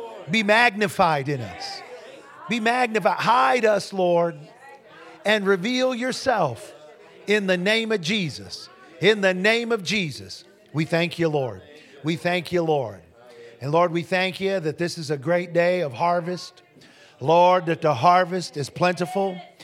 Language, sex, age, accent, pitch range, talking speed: English, male, 50-69, American, 175-215 Hz, 150 wpm